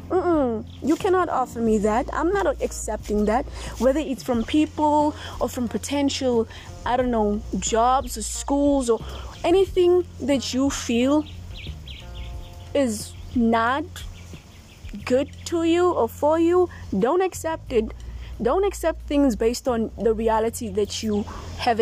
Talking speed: 140 wpm